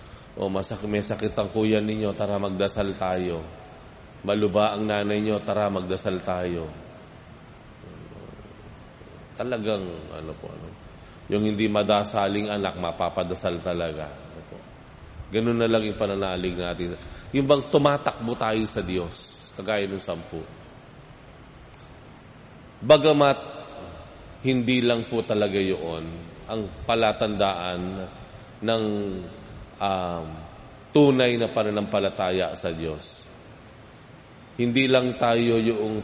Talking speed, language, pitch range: 100 wpm, Filipino, 90-115 Hz